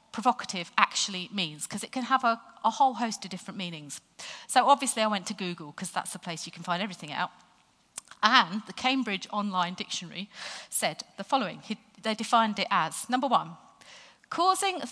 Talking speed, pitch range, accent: 185 wpm, 180-245 Hz, British